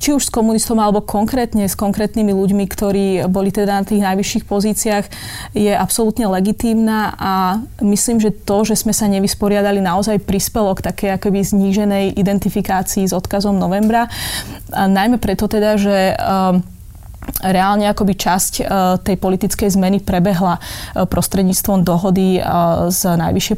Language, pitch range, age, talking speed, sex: Slovak, 190-215 Hz, 20-39, 135 wpm, female